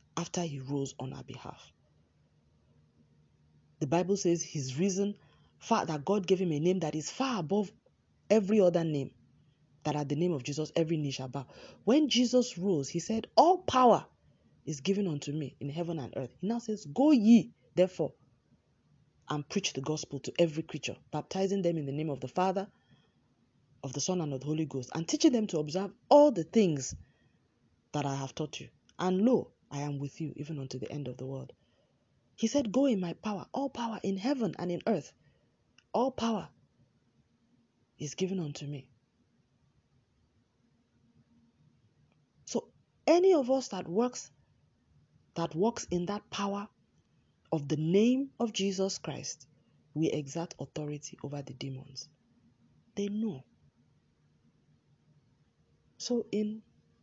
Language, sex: English, female